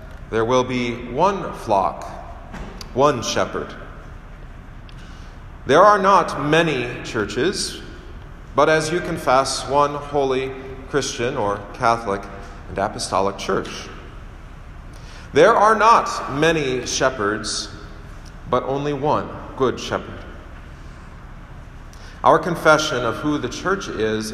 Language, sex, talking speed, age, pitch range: English, male, 100 wpm, 40-59, 105-150 Hz